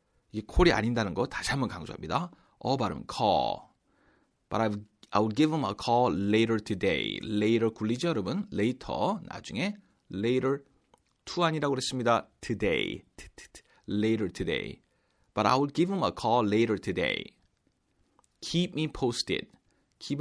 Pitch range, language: 105-150 Hz, Korean